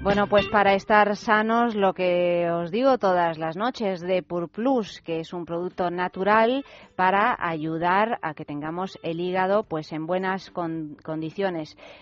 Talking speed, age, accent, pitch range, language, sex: 155 wpm, 30-49, Spanish, 175-210 Hz, Spanish, female